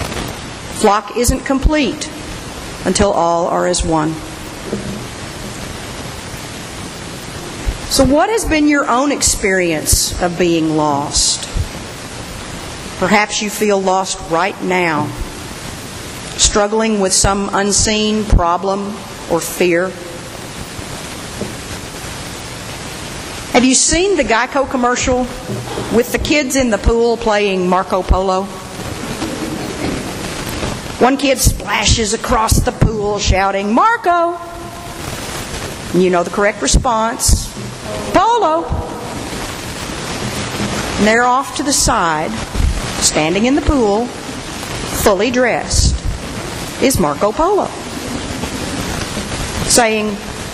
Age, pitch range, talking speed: 50-69, 185-265 Hz, 90 wpm